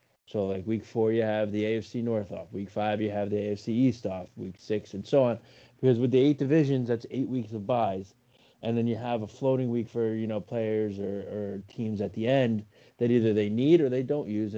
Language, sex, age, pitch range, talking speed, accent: English, male, 30-49, 105-120 Hz, 240 wpm, American